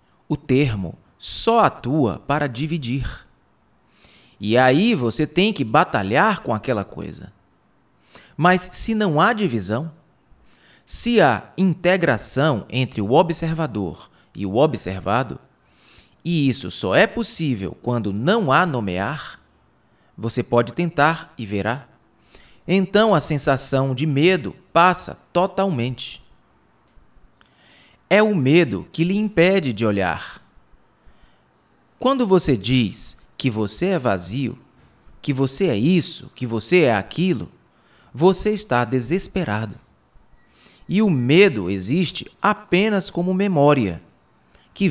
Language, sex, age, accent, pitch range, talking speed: Portuguese, male, 30-49, Brazilian, 110-180 Hz, 110 wpm